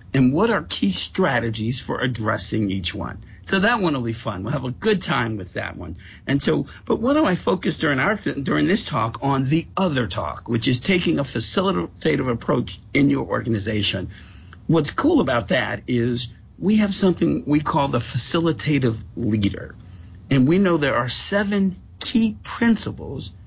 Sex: male